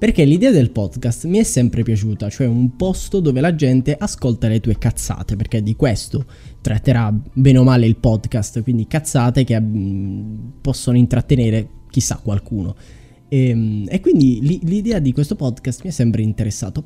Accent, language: native, Italian